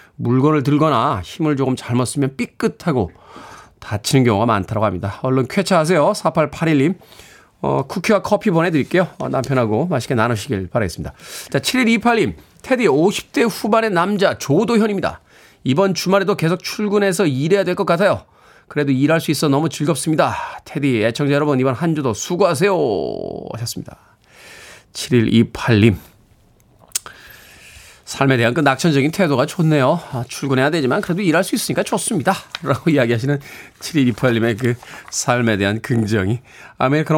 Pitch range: 120-185 Hz